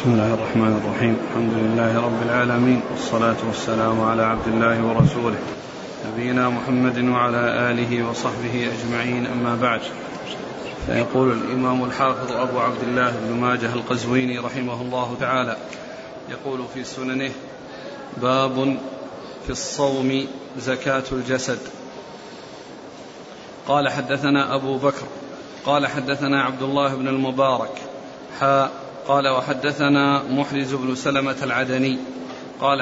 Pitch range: 125-145 Hz